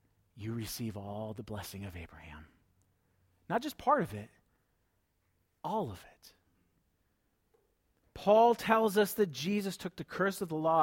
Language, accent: English, American